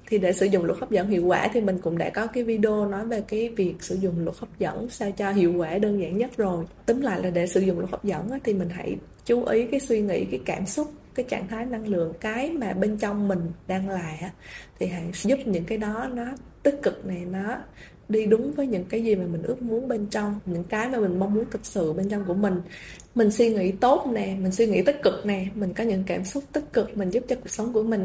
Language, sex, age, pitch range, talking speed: Vietnamese, female, 20-39, 190-230 Hz, 265 wpm